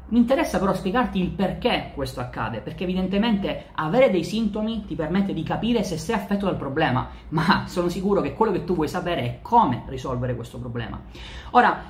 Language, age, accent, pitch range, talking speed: Italian, 30-49, native, 145-195 Hz, 185 wpm